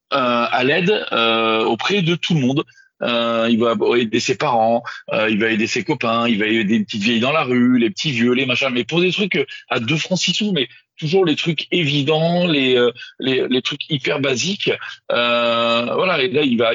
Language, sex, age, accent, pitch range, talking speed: French, male, 40-59, French, 115-160 Hz, 230 wpm